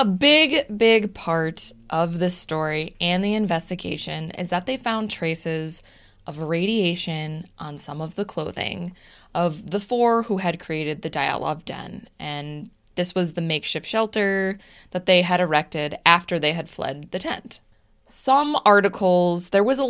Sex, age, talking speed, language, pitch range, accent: female, 20-39, 155 wpm, English, 155-200 Hz, American